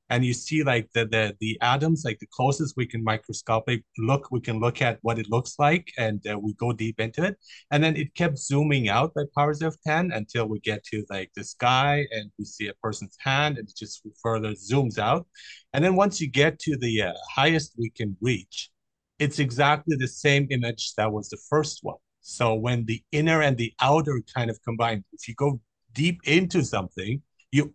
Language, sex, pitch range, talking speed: English, male, 110-150 Hz, 210 wpm